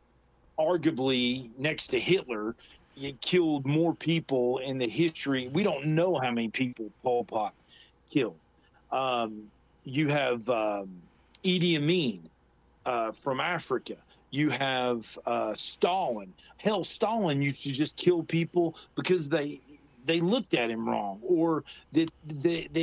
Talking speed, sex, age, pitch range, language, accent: 130 wpm, male, 40-59, 130-185 Hz, English, American